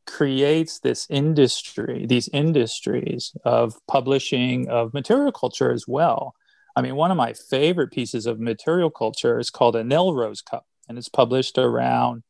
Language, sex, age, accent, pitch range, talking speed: English, male, 40-59, American, 125-150 Hz, 155 wpm